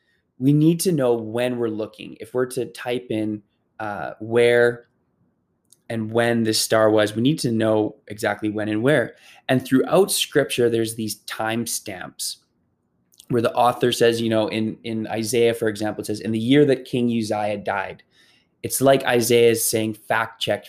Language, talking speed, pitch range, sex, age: English, 170 wpm, 110-140 Hz, male, 20-39